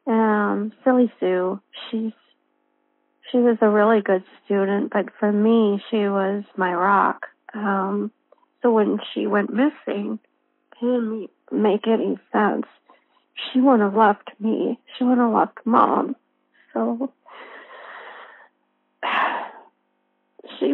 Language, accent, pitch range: English, American, 220-280 Hz